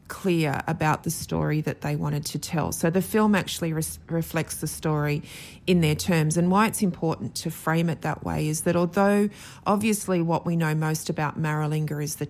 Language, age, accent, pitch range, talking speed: English, 30-49, Australian, 155-175 Hz, 200 wpm